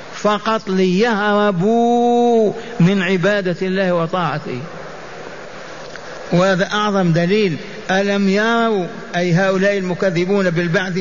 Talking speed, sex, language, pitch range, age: 80 wpm, male, Arabic, 175-205 Hz, 50-69